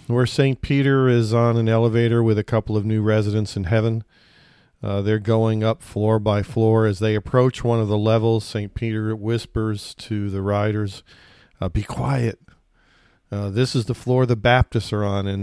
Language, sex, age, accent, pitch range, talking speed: English, male, 50-69, American, 105-120 Hz, 185 wpm